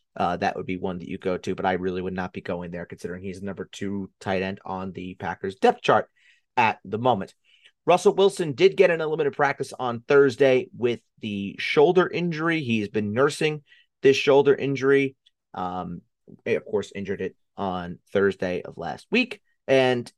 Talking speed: 185 wpm